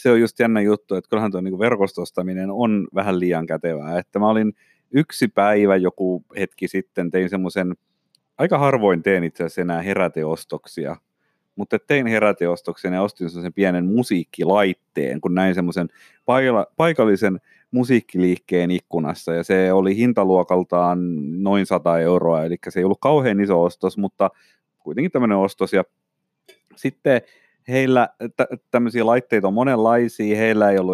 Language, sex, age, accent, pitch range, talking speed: Finnish, male, 30-49, native, 90-105 Hz, 140 wpm